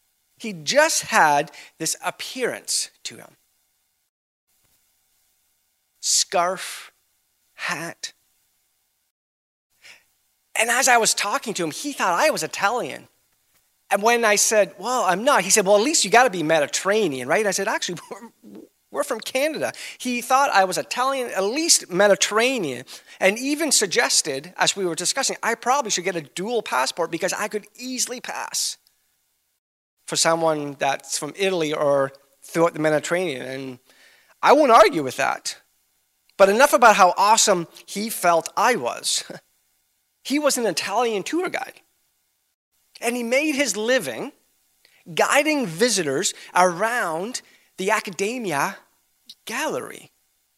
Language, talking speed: English, 135 wpm